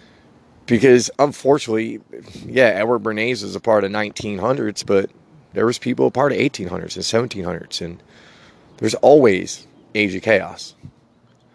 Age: 30-49